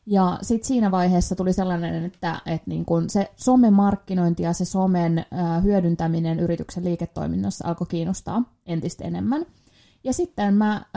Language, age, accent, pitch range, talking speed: Finnish, 20-39, native, 170-210 Hz, 150 wpm